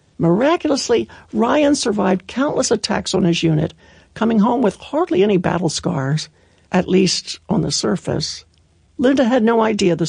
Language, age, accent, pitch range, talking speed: English, 60-79, American, 165-205 Hz, 150 wpm